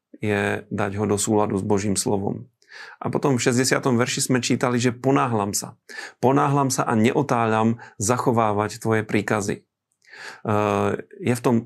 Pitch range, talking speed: 105-120 Hz, 145 wpm